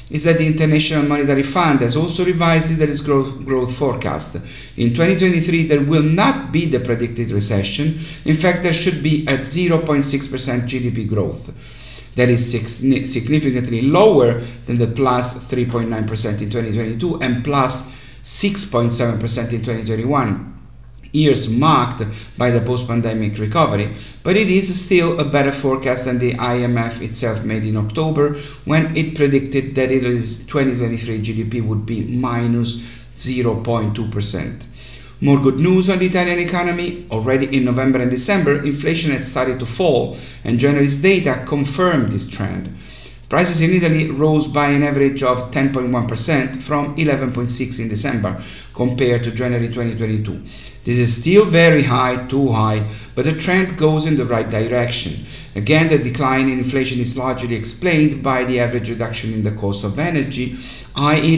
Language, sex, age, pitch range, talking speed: English, male, 50-69, 120-150 Hz, 145 wpm